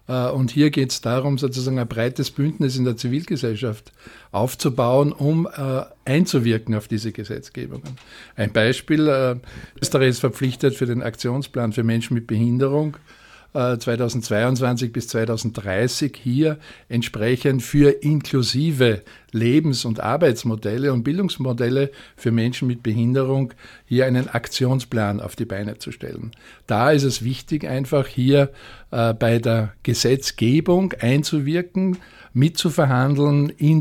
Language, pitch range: German, 115-140 Hz